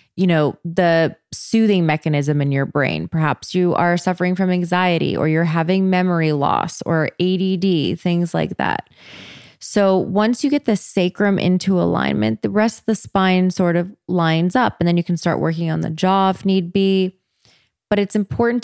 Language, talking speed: English, 180 wpm